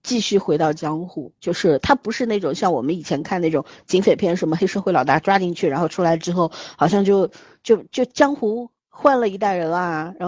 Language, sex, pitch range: Chinese, female, 155-210 Hz